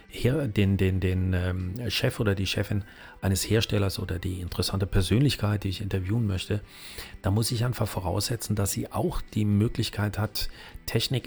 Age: 40-59